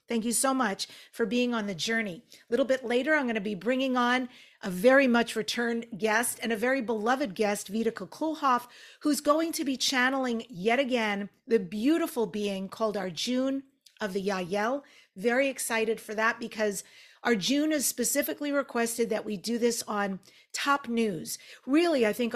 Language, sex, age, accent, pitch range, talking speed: English, female, 50-69, American, 215-270 Hz, 175 wpm